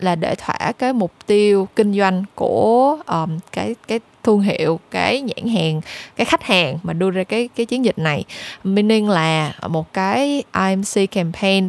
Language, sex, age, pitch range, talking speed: Vietnamese, female, 10-29, 175-225 Hz, 175 wpm